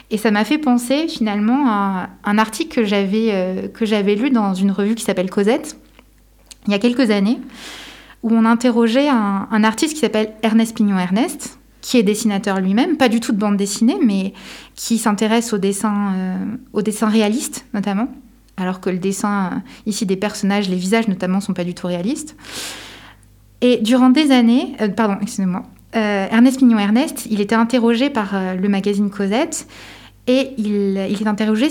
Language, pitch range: French, 205-250 Hz